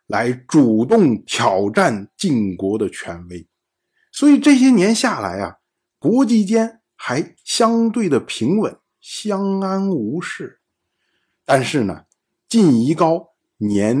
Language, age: Chinese, 50-69